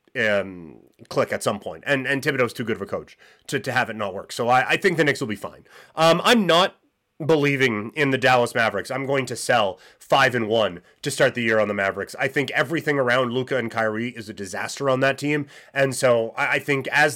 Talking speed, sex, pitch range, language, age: 230 wpm, male, 120-155 Hz, English, 30-49